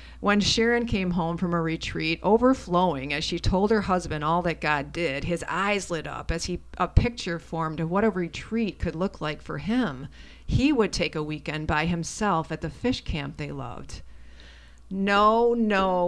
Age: 40-59